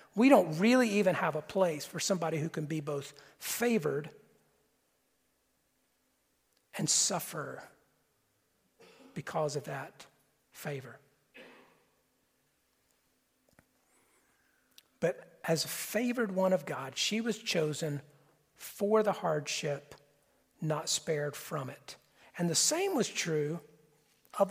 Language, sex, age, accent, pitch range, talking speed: English, male, 50-69, American, 170-220 Hz, 105 wpm